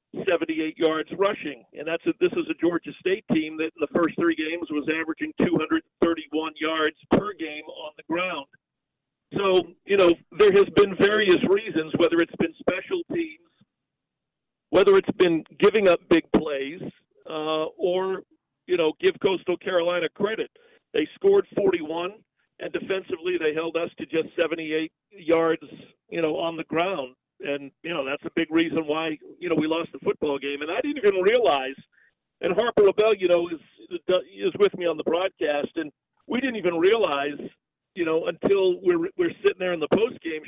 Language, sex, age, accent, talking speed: English, male, 50-69, American, 180 wpm